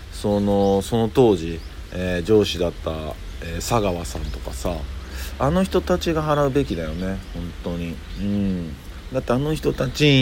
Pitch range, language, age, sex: 80-115 Hz, Japanese, 40-59, male